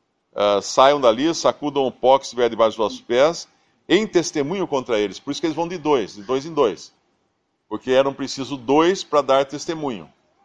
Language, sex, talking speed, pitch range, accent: Portuguese, male, 195 wpm, 120-180 Hz, Brazilian